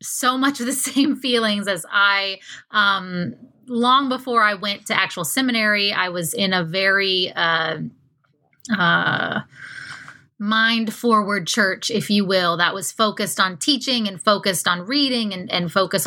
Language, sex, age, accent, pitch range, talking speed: English, female, 30-49, American, 185-225 Hz, 155 wpm